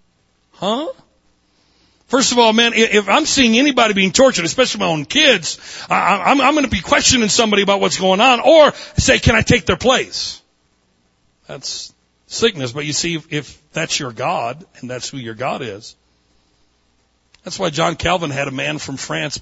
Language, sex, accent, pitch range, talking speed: English, male, American, 125-200 Hz, 175 wpm